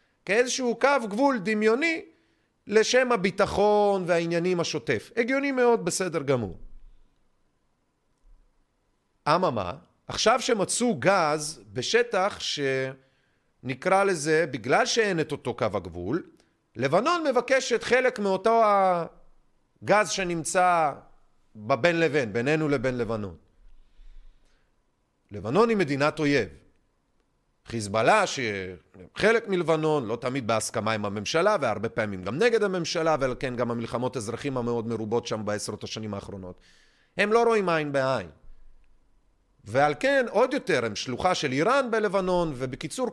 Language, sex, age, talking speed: Hebrew, male, 40-59, 110 wpm